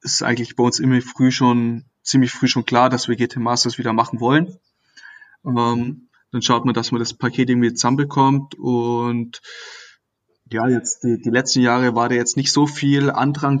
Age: 20-39